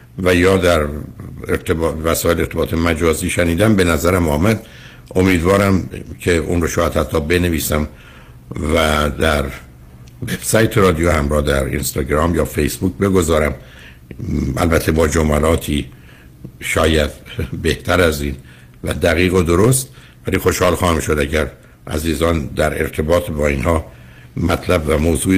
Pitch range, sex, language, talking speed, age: 75-90 Hz, male, Persian, 130 wpm, 60-79